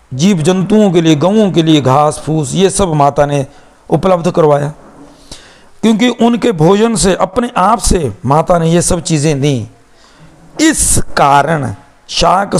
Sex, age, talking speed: male, 60-79, 150 wpm